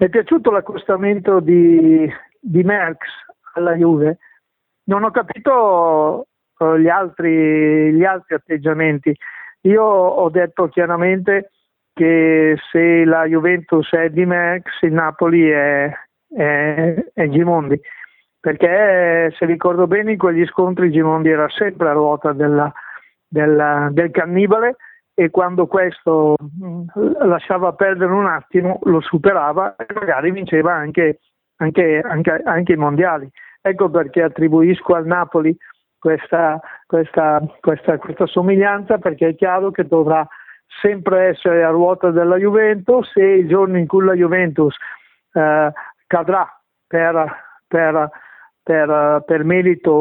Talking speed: 125 wpm